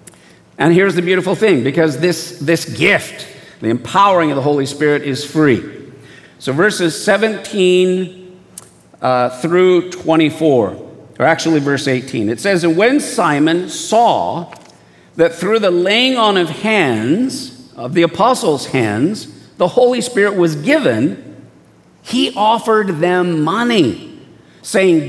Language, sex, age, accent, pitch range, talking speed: English, male, 50-69, American, 160-220 Hz, 130 wpm